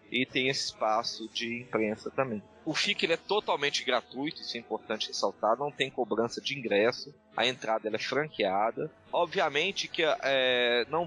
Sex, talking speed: male, 170 wpm